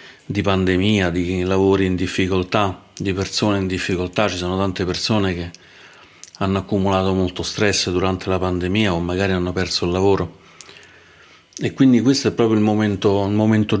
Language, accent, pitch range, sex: Italian, native, 90-110 Hz, male